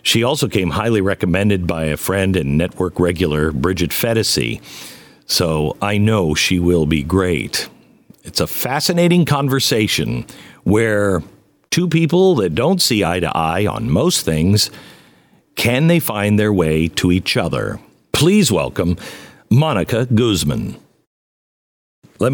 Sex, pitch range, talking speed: male, 90-115 Hz, 130 wpm